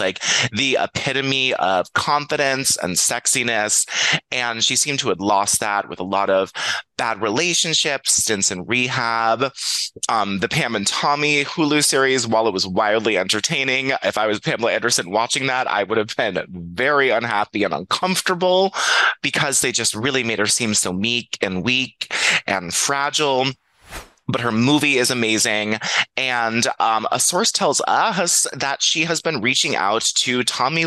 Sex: male